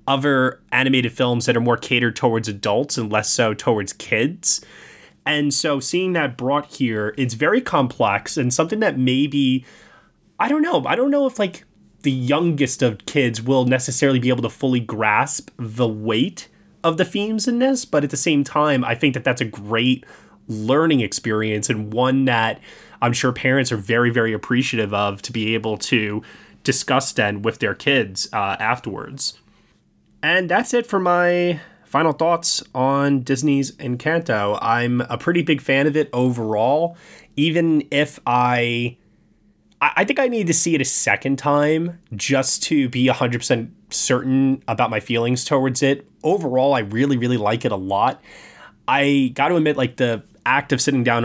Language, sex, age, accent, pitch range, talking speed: English, male, 20-39, American, 120-145 Hz, 170 wpm